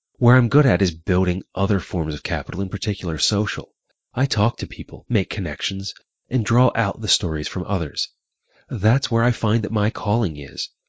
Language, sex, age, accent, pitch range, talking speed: English, male, 30-49, American, 85-110 Hz, 185 wpm